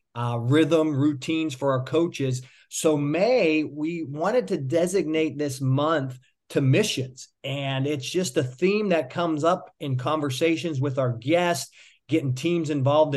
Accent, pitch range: American, 135-170 Hz